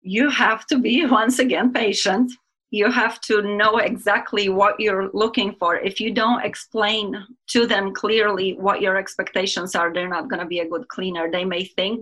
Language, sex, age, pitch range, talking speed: English, female, 30-49, 185-210 Hz, 190 wpm